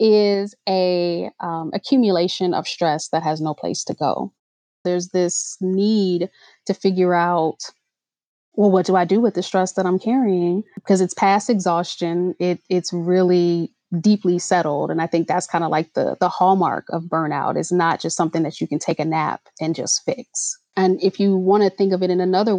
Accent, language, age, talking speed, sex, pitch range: American, English, 20-39, 185 wpm, female, 175-200 Hz